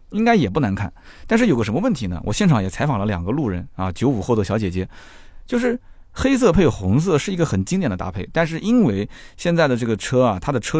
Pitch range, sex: 95-130 Hz, male